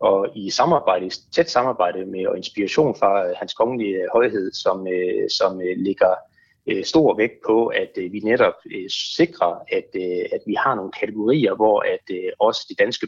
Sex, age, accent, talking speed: male, 30-49, native, 155 wpm